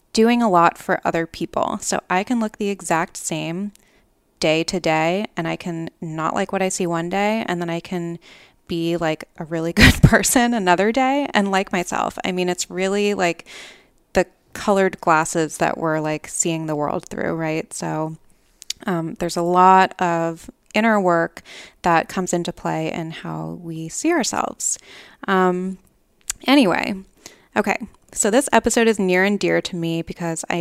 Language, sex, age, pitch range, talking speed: English, female, 20-39, 170-205 Hz, 175 wpm